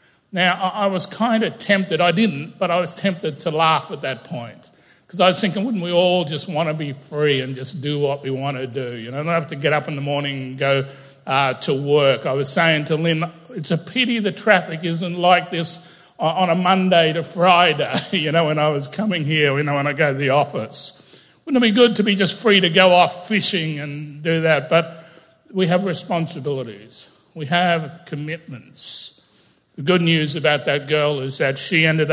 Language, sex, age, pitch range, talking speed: English, male, 60-79, 145-185 Hz, 220 wpm